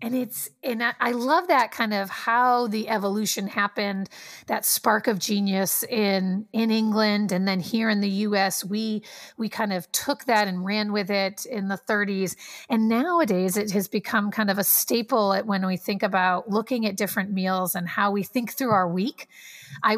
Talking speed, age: 195 wpm, 40-59